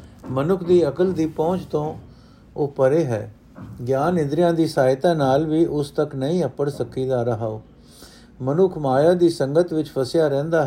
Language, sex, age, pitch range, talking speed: Punjabi, male, 50-69, 130-165 Hz, 165 wpm